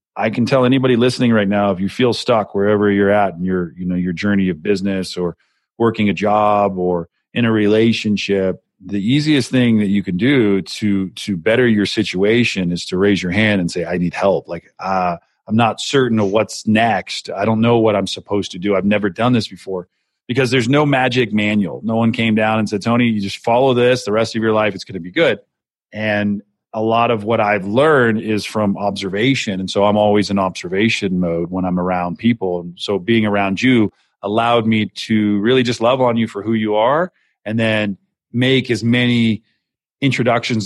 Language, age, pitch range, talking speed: English, 40-59, 95-115 Hz, 210 wpm